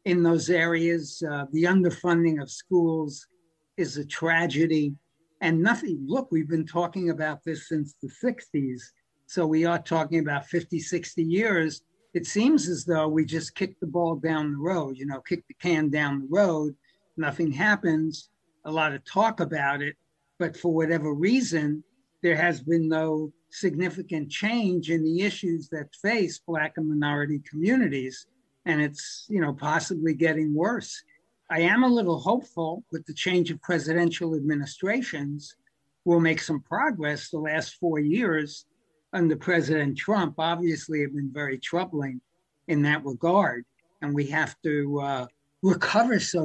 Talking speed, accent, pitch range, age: 155 wpm, American, 150-175 Hz, 60-79